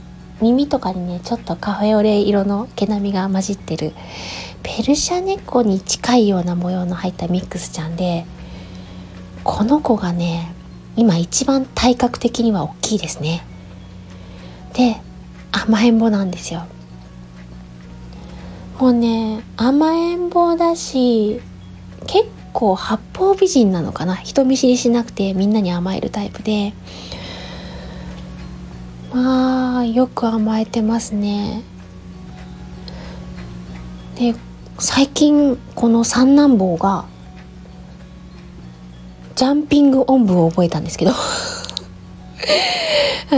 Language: Japanese